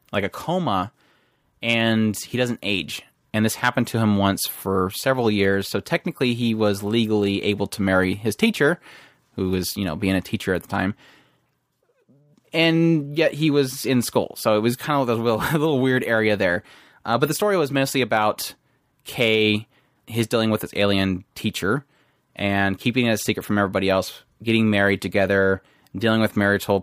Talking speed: 185 wpm